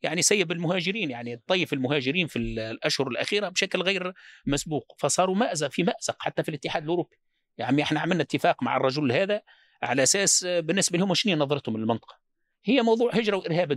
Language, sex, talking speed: Arabic, male, 170 wpm